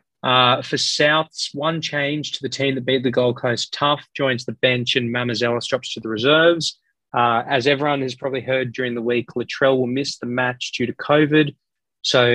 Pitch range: 120-140 Hz